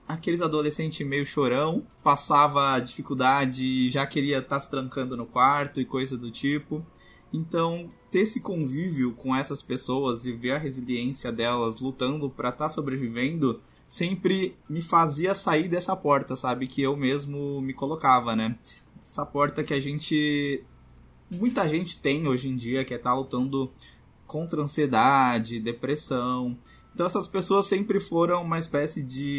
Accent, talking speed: Brazilian, 155 wpm